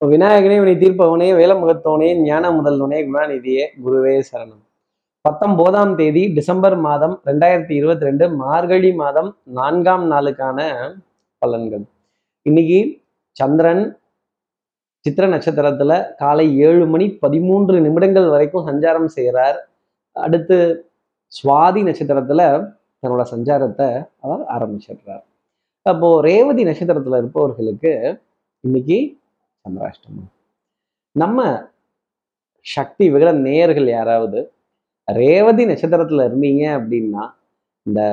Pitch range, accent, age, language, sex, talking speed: 140-180 Hz, native, 30-49, Tamil, male, 90 wpm